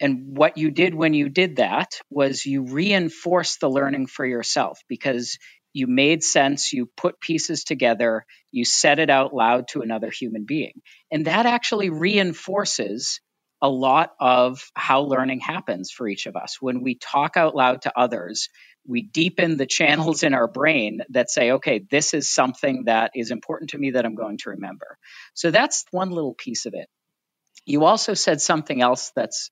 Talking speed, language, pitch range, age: 180 wpm, English, 130-165 Hz, 50-69